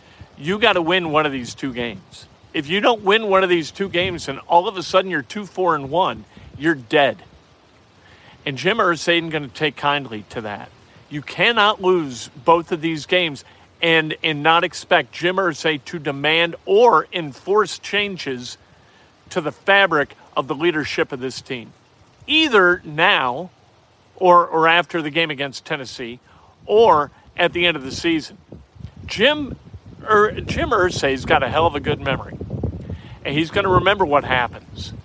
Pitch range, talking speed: 140-180 Hz, 170 wpm